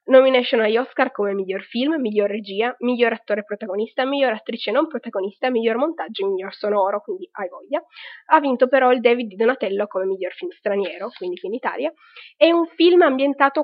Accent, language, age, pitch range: native, Italian, 10-29, 205-265 Hz